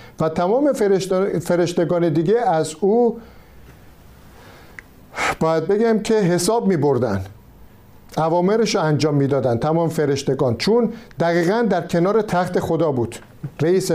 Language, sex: Persian, male